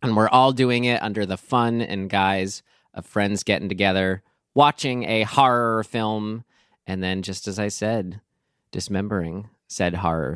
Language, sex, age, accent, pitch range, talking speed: English, male, 20-39, American, 100-130 Hz, 155 wpm